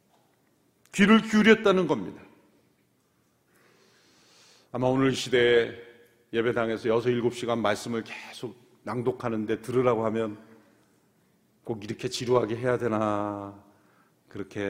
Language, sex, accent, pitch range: Korean, male, native, 120-195 Hz